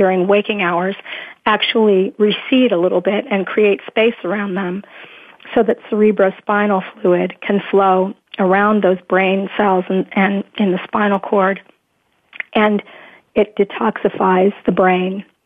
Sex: female